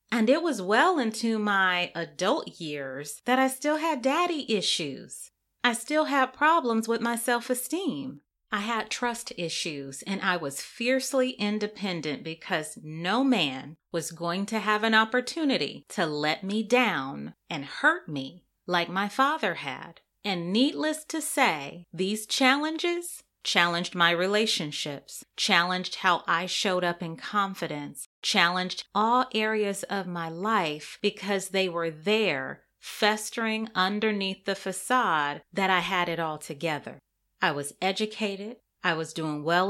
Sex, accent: female, American